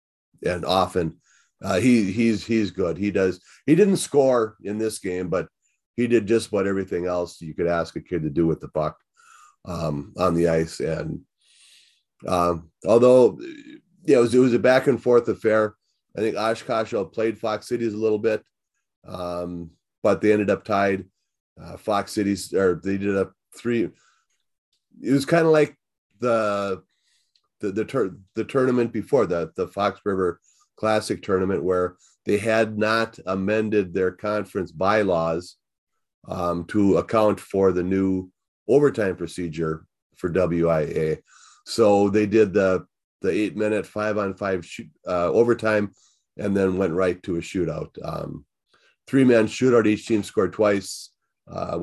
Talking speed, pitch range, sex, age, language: 160 wpm, 90-115 Hz, male, 30-49, English